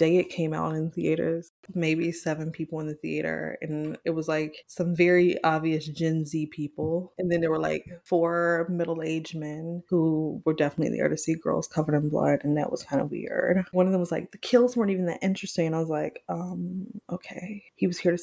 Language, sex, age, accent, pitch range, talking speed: English, female, 20-39, American, 155-175 Hz, 215 wpm